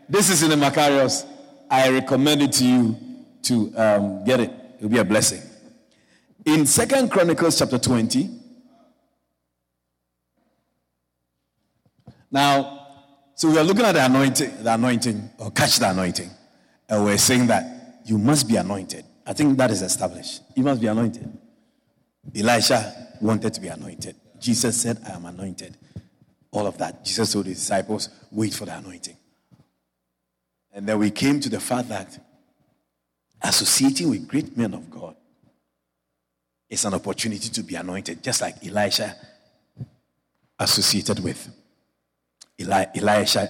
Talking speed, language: 140 wpm, English